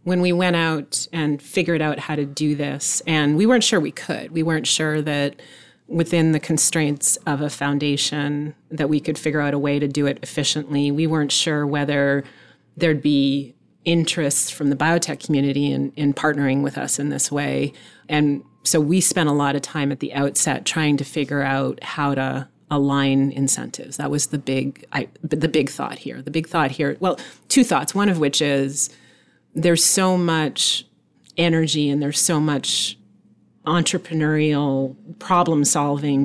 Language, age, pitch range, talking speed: English, 30-49, 140-160 Hz, 175 wpm